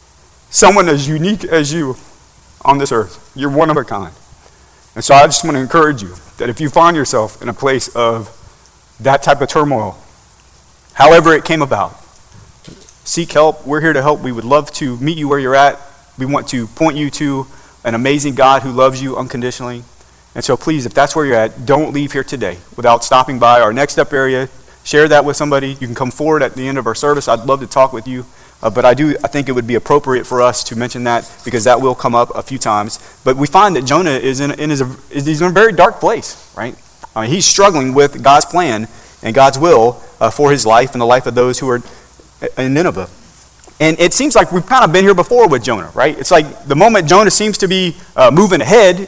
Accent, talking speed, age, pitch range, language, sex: American, 235 wpm, 30-49, 120-155 Hz, English, male